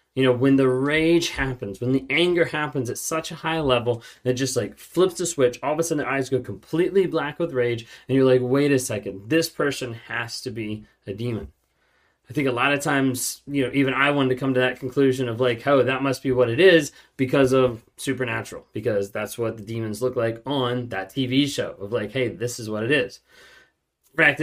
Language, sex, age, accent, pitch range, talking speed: English, male, 20-39, American, 115-145 Hz, 230 wpm